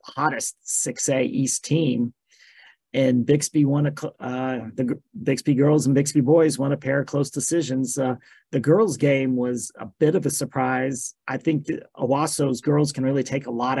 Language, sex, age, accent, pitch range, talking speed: English, male, 40-59, American, 130-150 Hz, 185 wpm